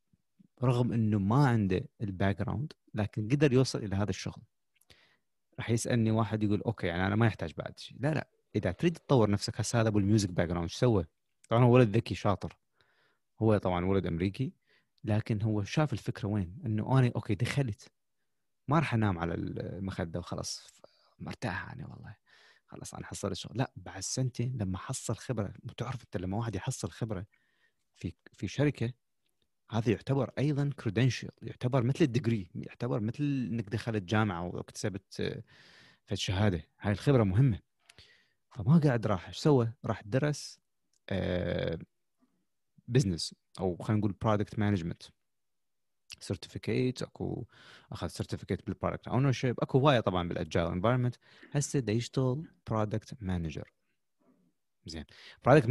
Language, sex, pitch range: Arabic, male, 100-130 Hz